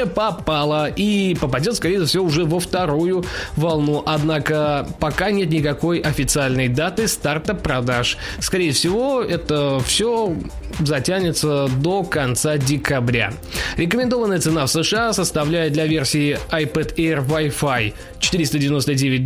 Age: 20-39